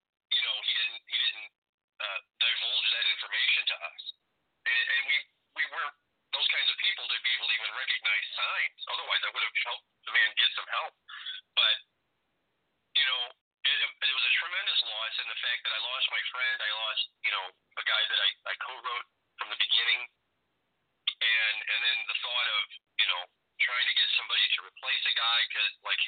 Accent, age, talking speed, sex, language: American, 40-59, 190 wpm, male, English